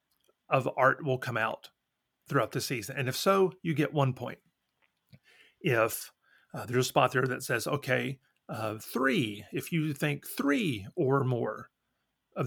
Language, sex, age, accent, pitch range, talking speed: English, male, 30-49, American, 130-160 Hz, 160 wpm